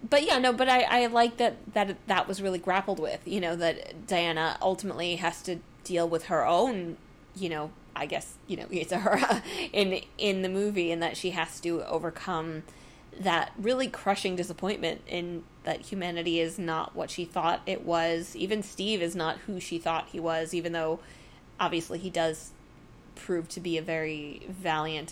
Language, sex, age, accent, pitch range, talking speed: English, female, 20-39, American, 165-195 Hz, 185 wpm